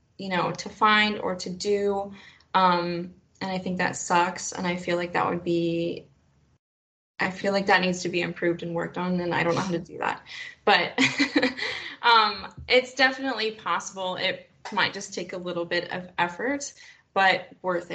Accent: American